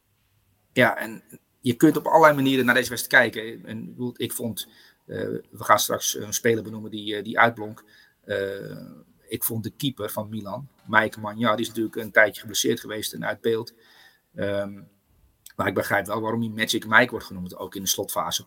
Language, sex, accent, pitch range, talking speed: Dutch, male, Dutch, 105-120 Hz, 190 wpm